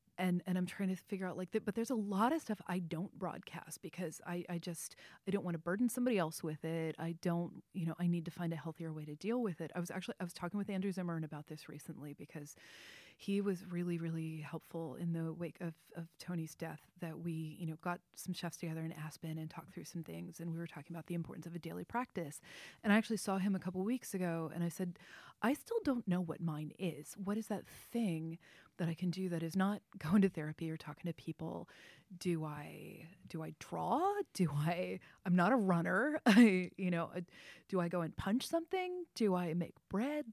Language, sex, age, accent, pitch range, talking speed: English, female, 30-49, American, 165-205 Hz, 235 wpm